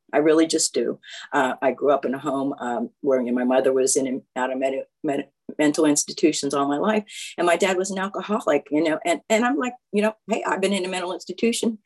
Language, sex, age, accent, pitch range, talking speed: English, female, 50-69, American, 140-215 Hz, 235 wpm